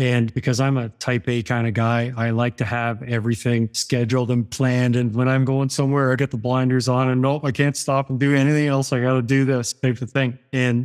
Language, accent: English, American